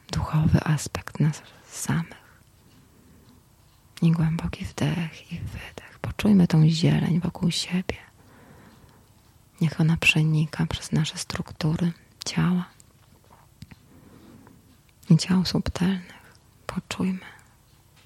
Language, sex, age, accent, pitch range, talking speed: Polish, female, 20-39, native, 120-170 Hz, 85 wpm